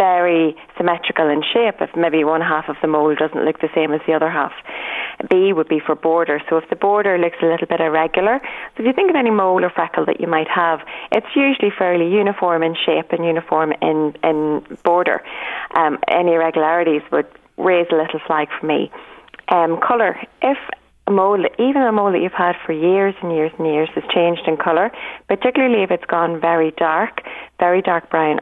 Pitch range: 160-190 Hz